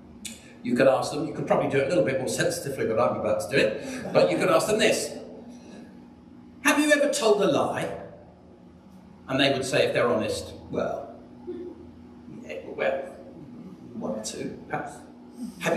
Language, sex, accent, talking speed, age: English, male, British, 180 wpm, 50-69